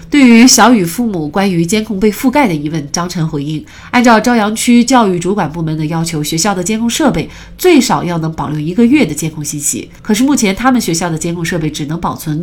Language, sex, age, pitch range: Chinese, female, 30-49, 160-220 Hz